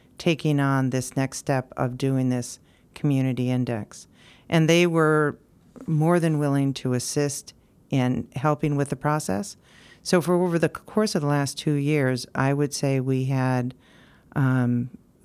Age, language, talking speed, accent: 50-69, English, 155 wpm, American